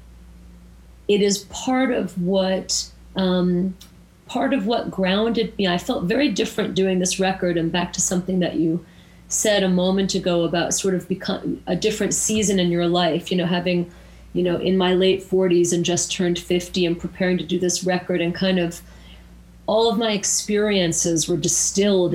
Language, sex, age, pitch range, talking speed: English, female, 40-59, 170-195 Hz, 180 wpm